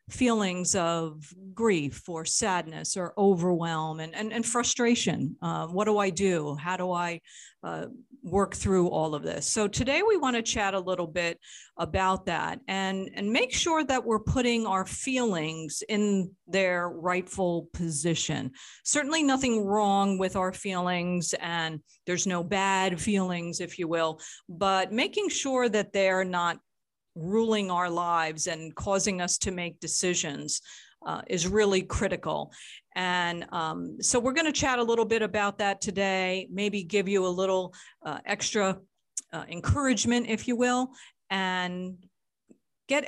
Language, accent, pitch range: English, American, 170-215 Hz